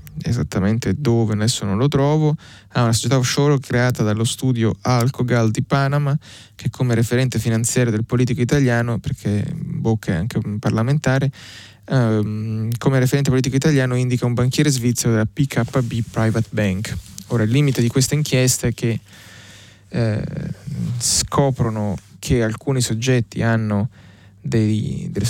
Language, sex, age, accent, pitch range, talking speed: Italian, male, 20-39, native, 105-125 Hz, 135 wpm